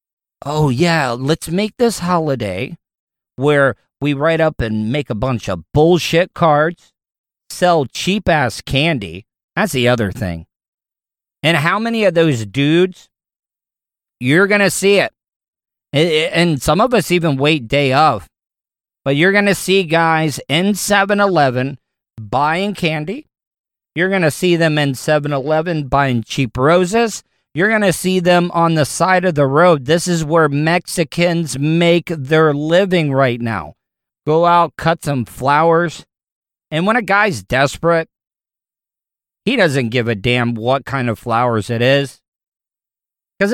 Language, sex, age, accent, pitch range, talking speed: English, male, 40-59, American, 140-180 Hz, 145 wpm